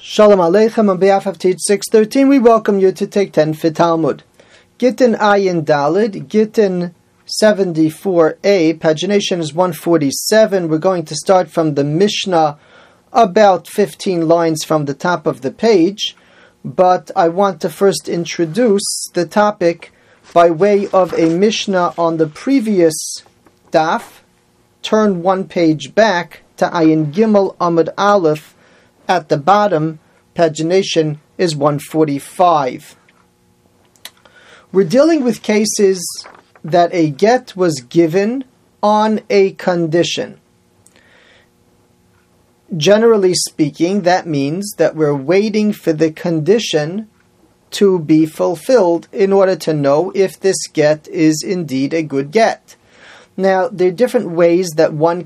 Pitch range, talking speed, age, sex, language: 160-200 Hz, 130 wpm, 40-59, male, English